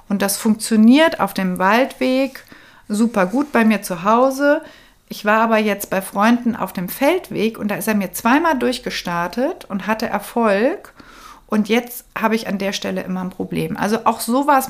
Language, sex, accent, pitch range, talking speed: German, female, German, 190-230 Hz, 180 wpm